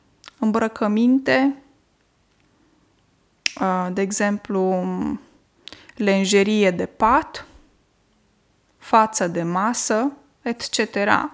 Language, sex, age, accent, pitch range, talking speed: Romanian, female, 20-39, native, 205-265 Hz, 55 wpm